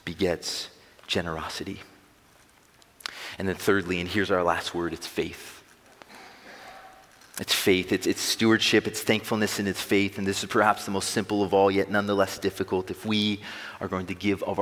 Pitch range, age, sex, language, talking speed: 95-110 Hz, 30-49, male, English, 170 wpm